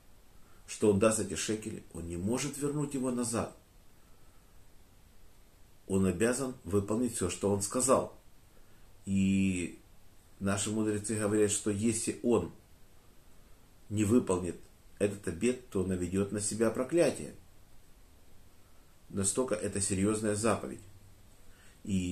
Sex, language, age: male, Russian, 50-69